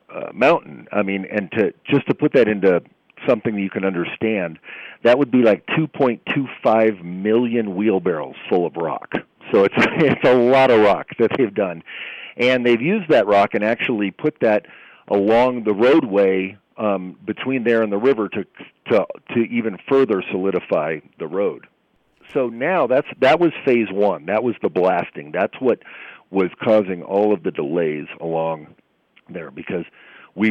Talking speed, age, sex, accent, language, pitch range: 180 wpm, 40-59, male, American, English, 90-115 Hz